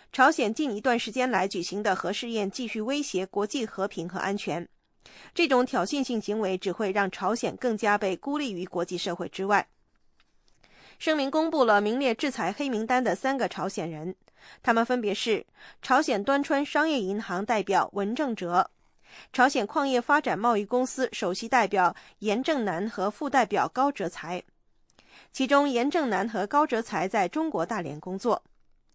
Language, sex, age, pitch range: English, female, 20-39, 200-260 Hz